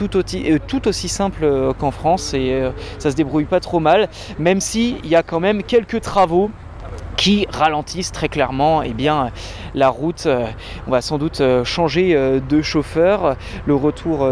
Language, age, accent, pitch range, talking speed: French, 20-39, French, 135-180 Hz, 165 wpm